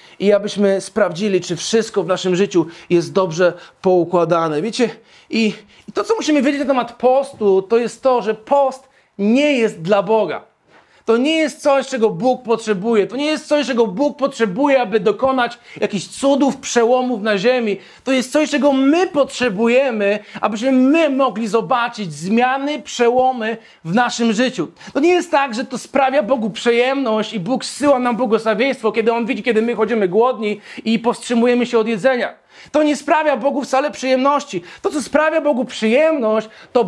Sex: male